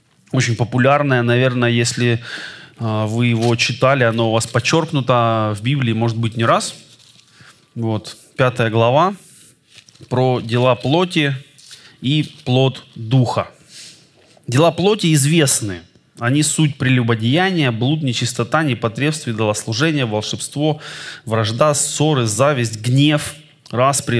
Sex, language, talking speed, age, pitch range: male, Russian, 105 wpm, 20-39, 115-150 Hz